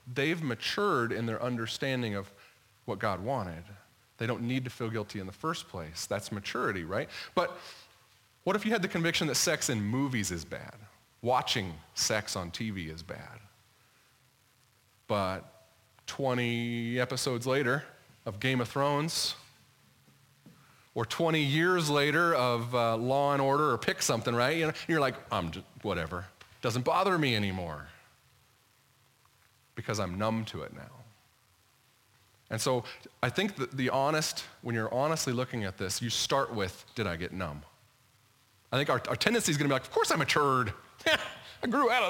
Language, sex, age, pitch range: English, male, 30-49, 105-135 Hz